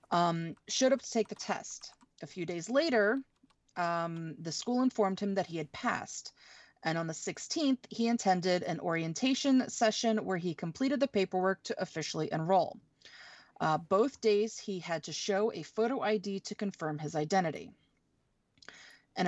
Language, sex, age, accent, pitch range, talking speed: English, female, 30-49, American, 165-225 Hz, 160 wpm